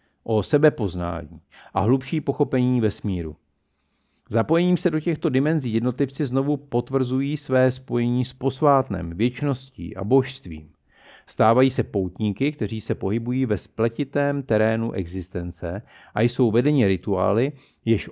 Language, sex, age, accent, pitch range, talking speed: Czech, male, 50-69, native, 95-135 Hz, 125 wpm